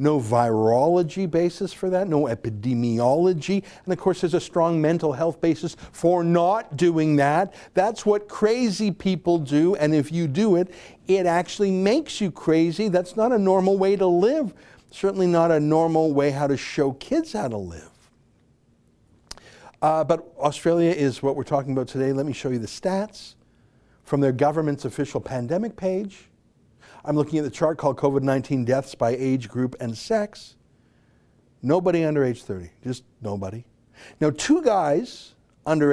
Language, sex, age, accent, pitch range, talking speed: English, male, 60-79, American, 130-180 Hz, 165 wpm